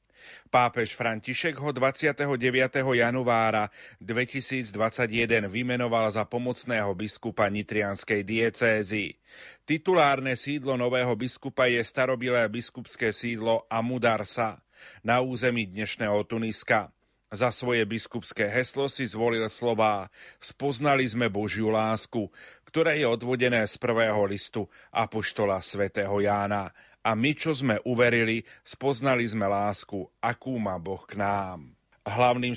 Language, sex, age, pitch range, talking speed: Slovak, male, 30-49, 110-125 Hz, 110 wpm